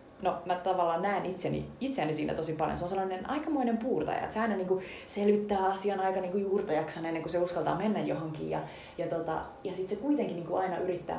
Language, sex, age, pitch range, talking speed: Finnish, female, 30-49, 155-200 Hz, 210 wpm